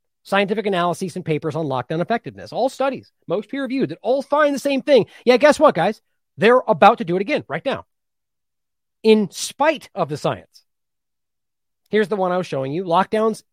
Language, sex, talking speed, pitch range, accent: English, male, 185 wpm, 155-255 Hz, American